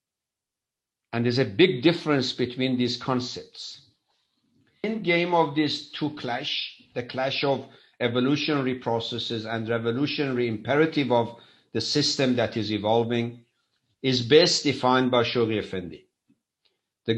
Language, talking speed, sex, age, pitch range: English, 120 wpm, male, 50-69, 115-140 Hz